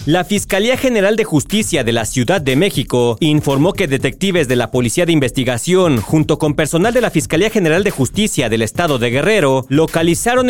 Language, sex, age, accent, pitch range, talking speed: Spanish, male, 40-59, Mexican, 135-195 Hz, 185 wpm